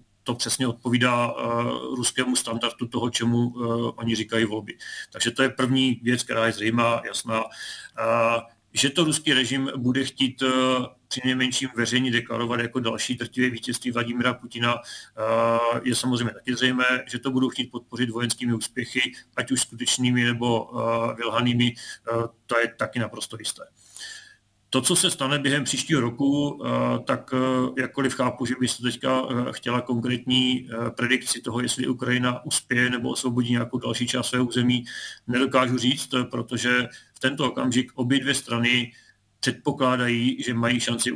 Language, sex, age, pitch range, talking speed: Slovak, male, 40-59, 120-130 Hz, 140 wpm